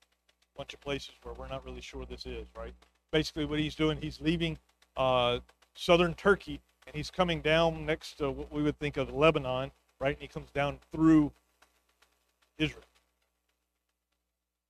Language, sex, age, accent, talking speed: English, male, 40-59, American, 160 wpm